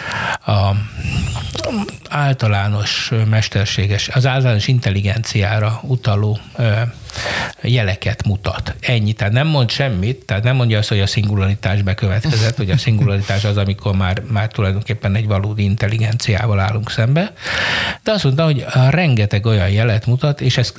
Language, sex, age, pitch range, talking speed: Hungarian, male, 60-79, 105-130 Hz, 130 wpm